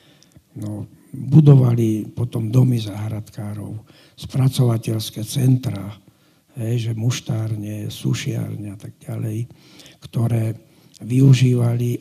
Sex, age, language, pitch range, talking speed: male, 60-79, Slovak, 115-145 Hz, 70 wpm